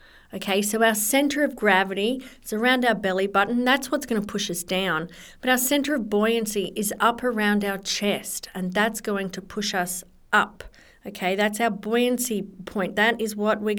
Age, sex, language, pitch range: 50-69, female, English, 185-225 Hz